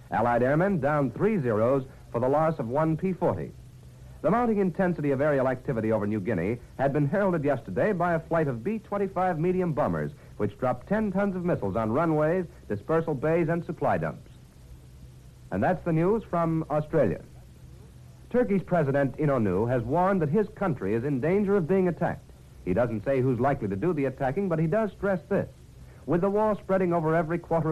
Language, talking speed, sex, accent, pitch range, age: English, 185 wpm, male, American, 130-180 Hz, 60-79